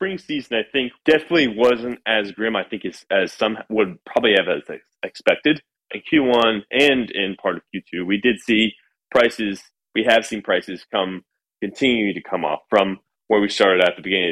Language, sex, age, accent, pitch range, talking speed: English, male, 30-49, American, 100-135 Hz, 185 wpm